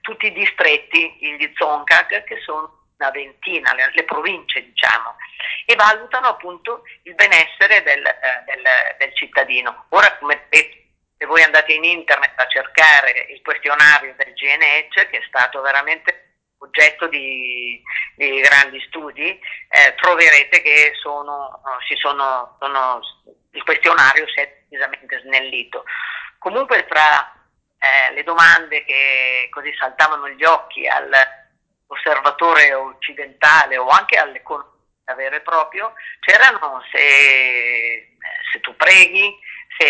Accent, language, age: native, Italian, 40-59